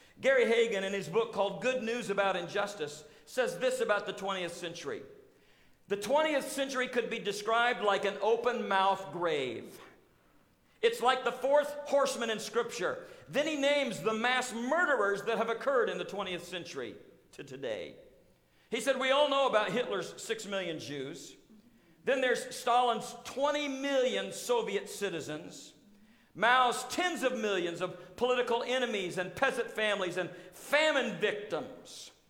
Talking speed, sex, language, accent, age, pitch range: 145 wpm, male, English, American, 50-69, 200-270 Hz